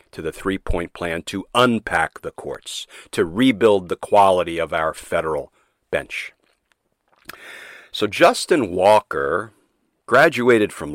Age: 50-69